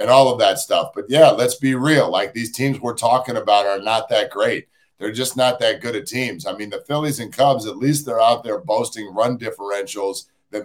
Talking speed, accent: 235 wpm, American